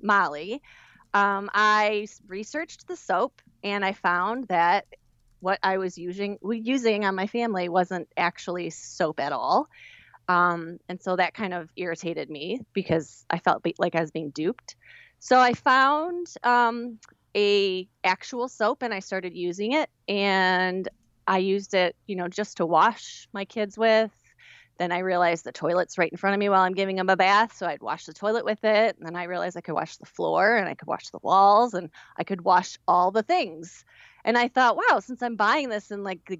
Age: 30-49